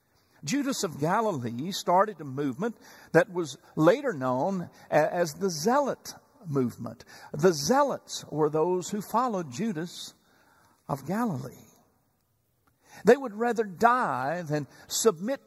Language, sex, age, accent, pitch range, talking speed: English, male, 60-79, American, 145-215 Hz, 115 wpm